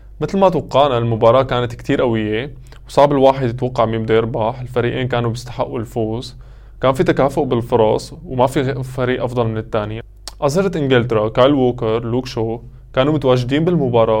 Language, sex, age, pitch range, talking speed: Arabic, male, 20-39, 115-135 Hz, 150 wpm